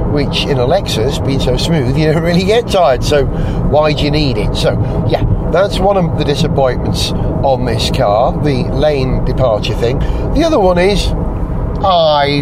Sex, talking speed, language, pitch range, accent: male, 180 wpm, English, 140-175 Hz, British